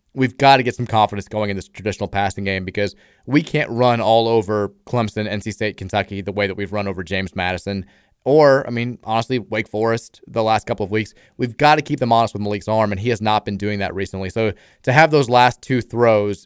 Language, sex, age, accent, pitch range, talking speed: English, male, 20-39, American, 105-130 Hz, 235 wpm